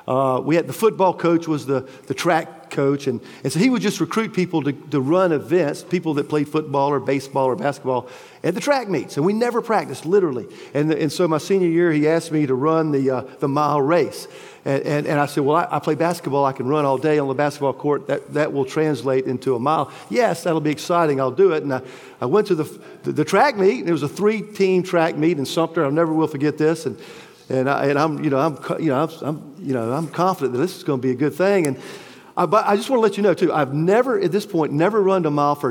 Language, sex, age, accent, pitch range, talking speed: English, male, 50-69, American, 145-180 Hz, 270 wpm